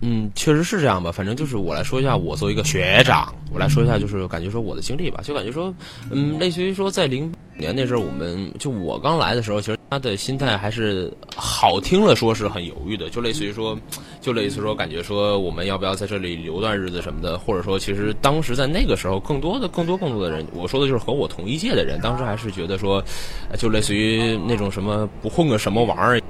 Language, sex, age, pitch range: English, male, 10-29, 95-130 Hz